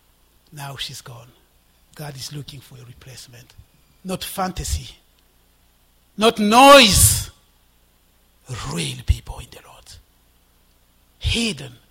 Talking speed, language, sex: 95 wpm, English, male